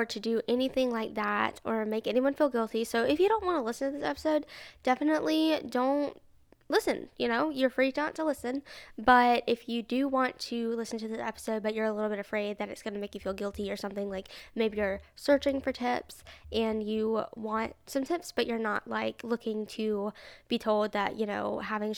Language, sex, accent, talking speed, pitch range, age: English, female, American, 215 wpm, 220-260 Hz, 10-29